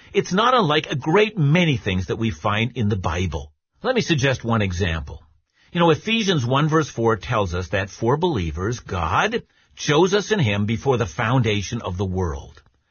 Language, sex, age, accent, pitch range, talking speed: English, male, 50-69, American, 115-165 Hz, 185 wpm